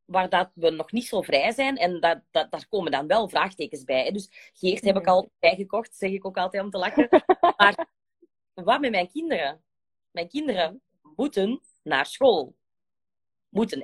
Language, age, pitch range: Dutch, 20-39, 180-230 Hz